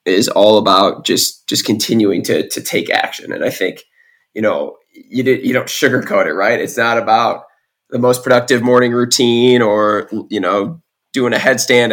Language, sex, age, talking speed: English, male, 20-39, 180 wpm